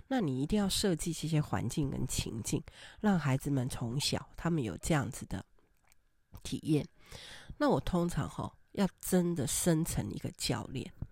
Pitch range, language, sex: 140-190 Hz, Chinese, female